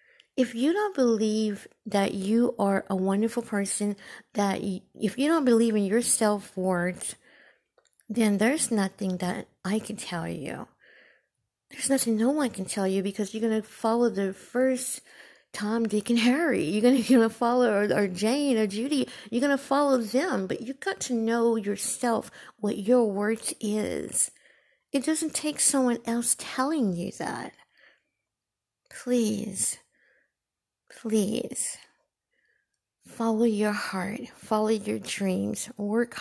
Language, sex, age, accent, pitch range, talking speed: English, female, 60-79, American, 210-260 Hz, 145 wpm